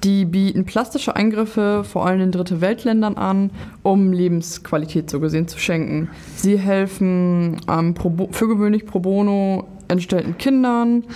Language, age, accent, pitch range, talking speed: German, 20-39, German, 175-205 Hz, 130 wpm